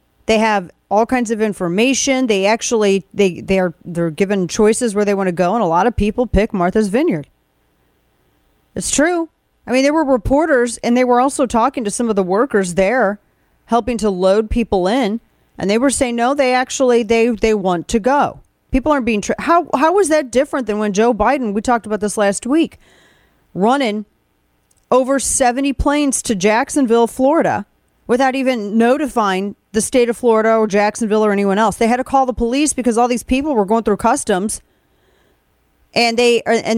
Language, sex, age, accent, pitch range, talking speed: English, female, 40-59, American, 210-260 Hz, 190 wpm